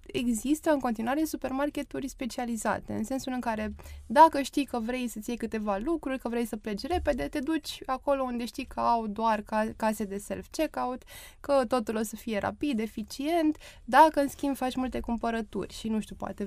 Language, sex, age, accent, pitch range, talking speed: Romanian, female, 20-39, native, 215-285 Hz, 180 wpm